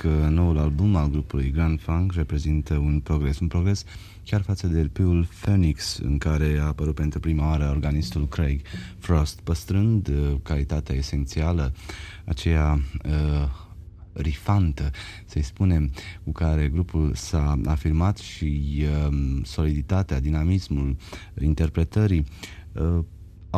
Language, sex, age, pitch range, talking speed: Romanian, male, 30-49, 75-90 Hz, 120 wpm